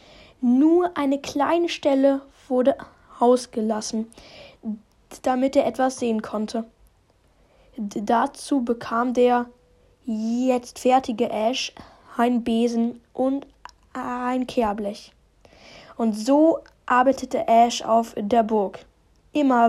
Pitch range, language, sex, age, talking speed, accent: 225-260 Hz, German, female, 10-29, 90 wpm, German